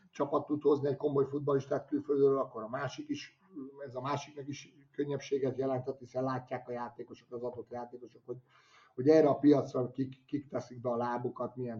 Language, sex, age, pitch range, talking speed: Hungarian, male, 30-49, 115-130 Hz, 180 wpm